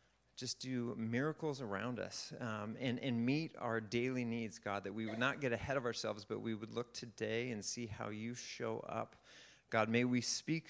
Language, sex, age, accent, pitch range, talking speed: English, male, 40-59, American, 110-130 Hz, 200 wpm